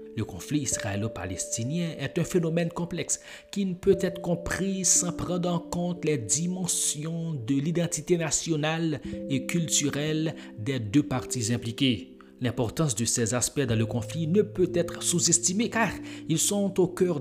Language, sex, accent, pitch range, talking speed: French, male, Canadian, 115-160 Hz, 150 wpm